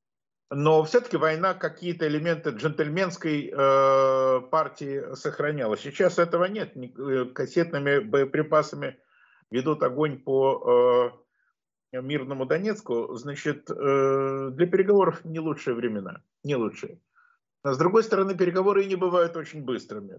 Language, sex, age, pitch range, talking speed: Russian, male, 50-69, 135-180 Hz, 110 wpm